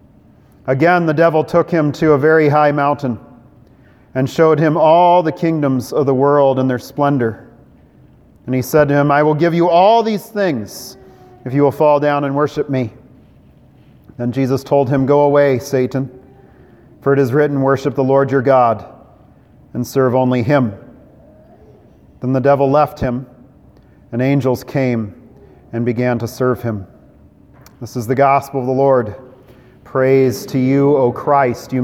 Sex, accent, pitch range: male, American, 125-150 Hz